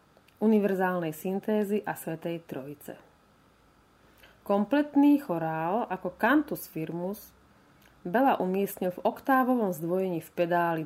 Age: 30-49